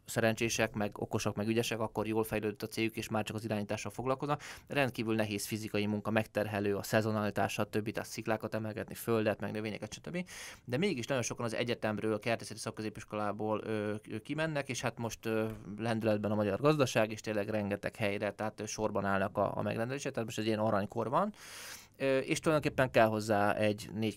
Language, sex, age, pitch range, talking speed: Hungarian, male, 20-39, 105-120 Hz, 180 wpm